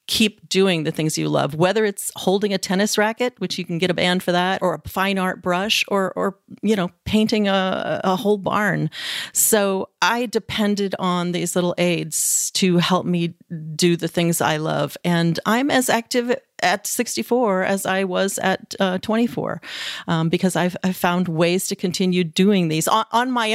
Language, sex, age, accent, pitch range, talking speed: English, female, 40-59, American, 175-220 Hz, 190 wpm